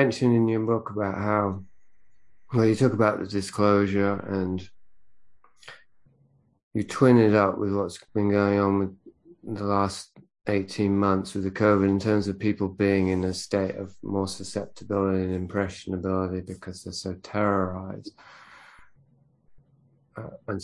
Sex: male